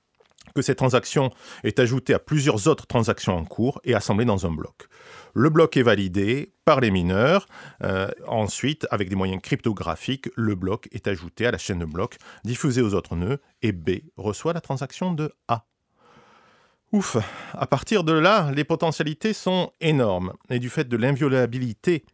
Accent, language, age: French, French, 40-59